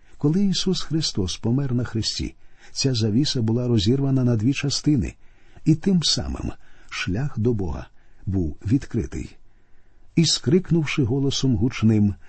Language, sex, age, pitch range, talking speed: Ukrainian, male, 50-69, 100-135 Hz, 120 wpm